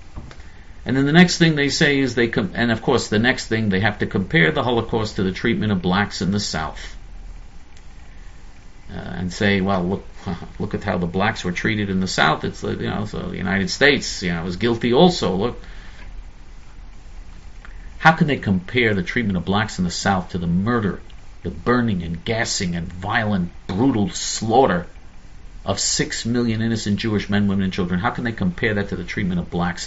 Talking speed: 200 wpm